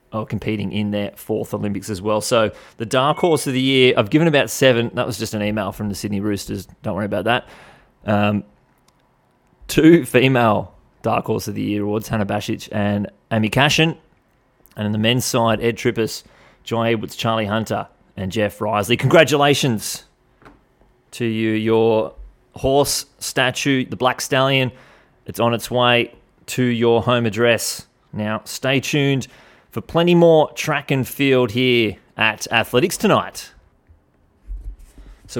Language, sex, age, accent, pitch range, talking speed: English, male, 30-49, Australian, 105-130 Hz, 155 wpm